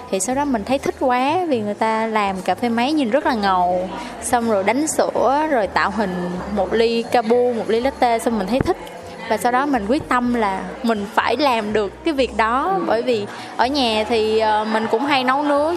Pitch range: 215-260 Hz